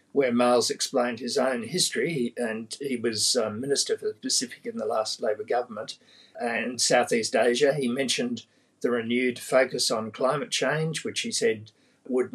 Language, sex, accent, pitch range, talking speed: English, male, Australian, 120-165 Hz, 160 wpm